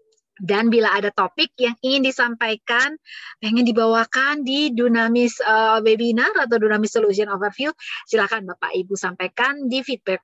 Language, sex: English, female